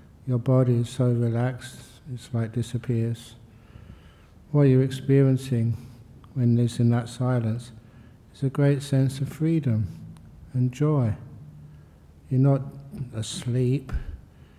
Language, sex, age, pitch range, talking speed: English, male, 60-79, 120-135 Hz, 110 wpm